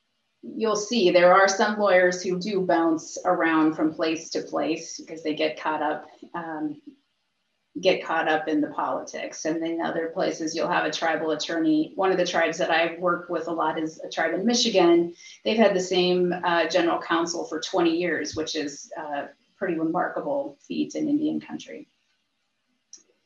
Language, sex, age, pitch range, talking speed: English, female, 30-49, 165-210 Hz, 180 wpm